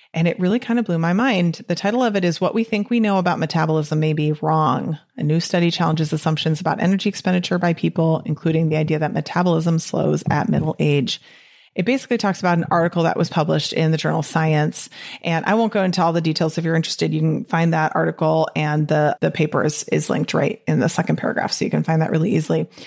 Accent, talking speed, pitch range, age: American, 235 wpm, 160-195 Hz, 30-49